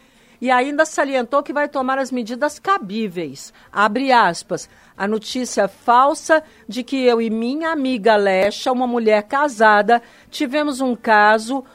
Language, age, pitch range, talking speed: Portuguese, 50-69, 220-265 Hz, 140 wpm